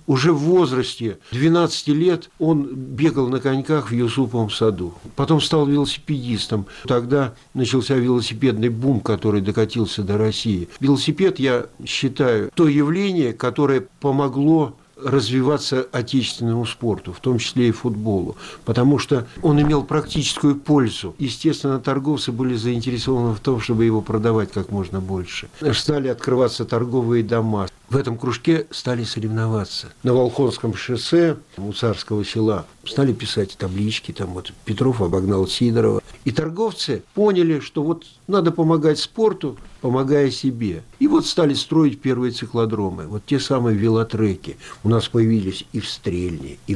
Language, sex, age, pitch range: Russian, male, 60-79, 110-145 Hz